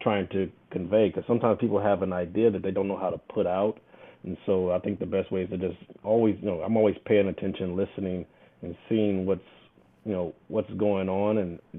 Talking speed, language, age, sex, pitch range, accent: 225 wpm, English, 30-49, male, 90-105 Hz, American